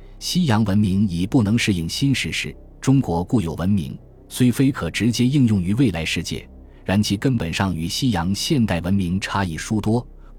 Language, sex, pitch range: Chinese, male, 85-115 Hz